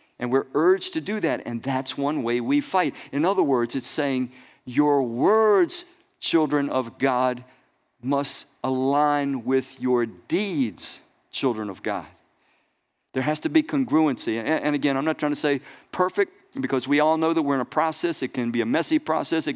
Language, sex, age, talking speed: English, male, 50-69, 180 wpm